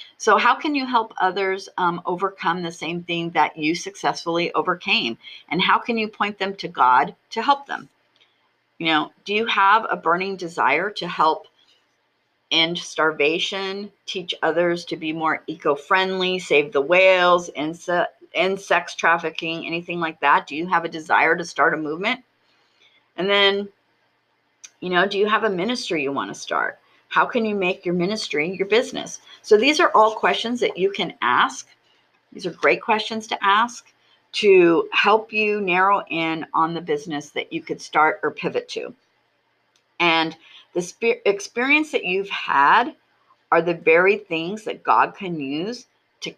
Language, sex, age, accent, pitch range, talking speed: English, female, 40-59, American, 165-215 Hz, 165 wpm